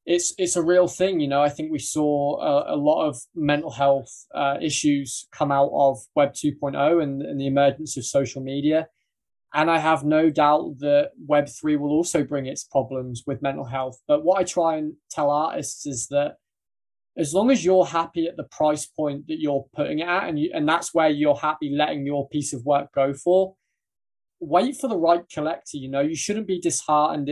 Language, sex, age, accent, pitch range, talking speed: English, male, 20-39, British, 140-170 Hz, 210 wpm